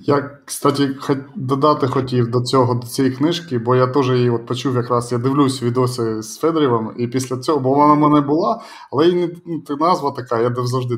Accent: native